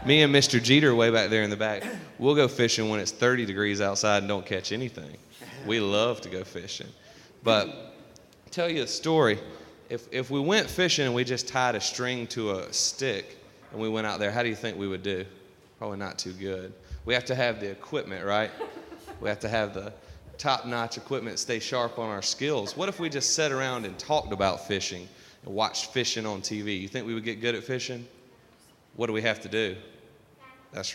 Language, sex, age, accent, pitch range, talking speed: English, male, 30-49, American, 100-125 Hz, 215 wpm